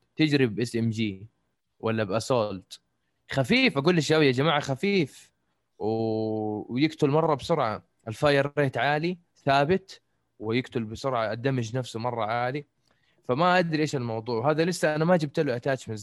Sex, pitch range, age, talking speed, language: male, 115-155 Hz, 20-39, 140 wpm, Arabic